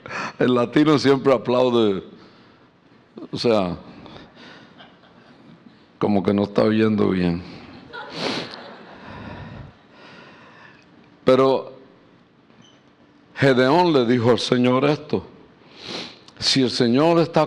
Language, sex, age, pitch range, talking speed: English, male, 60-79, 120-165 Hz, 80 wpm